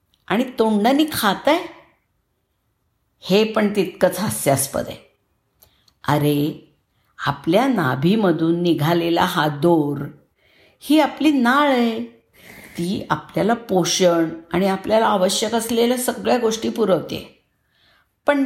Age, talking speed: 50-69, 100 wpm